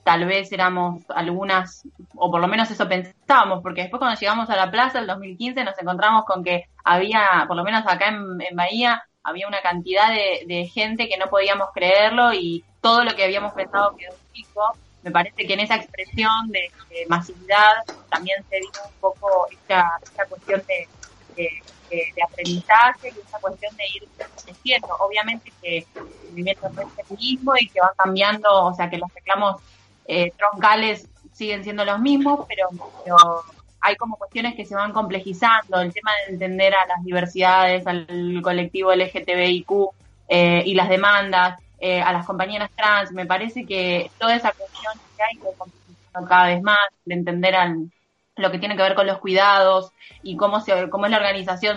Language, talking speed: Spanish, 180 wpm